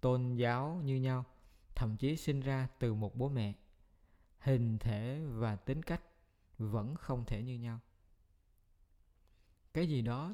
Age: 20-39